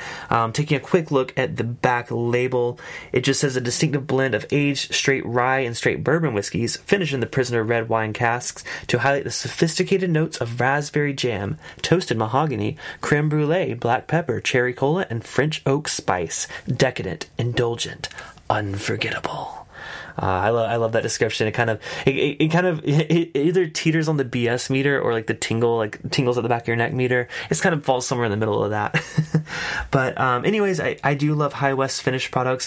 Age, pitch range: 20-39, 115-145 Hz